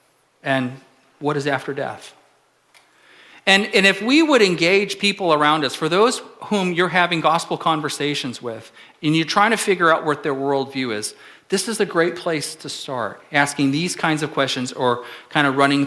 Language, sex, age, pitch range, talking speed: English, male, 40-59, 140-190 Hz, 180 wpm